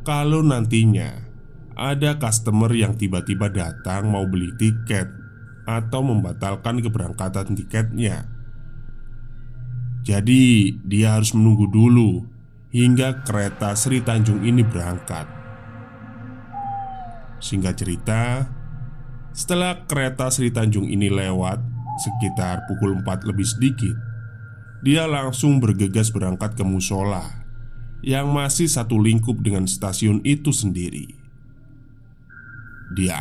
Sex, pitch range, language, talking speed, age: male, 105-125 Hz, Indonesian, 95 wpm, 20-39